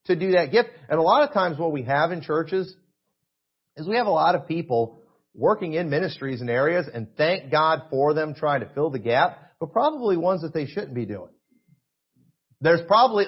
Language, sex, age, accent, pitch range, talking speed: English, male, 40-59, American, 135-185 Hz, 210 wpm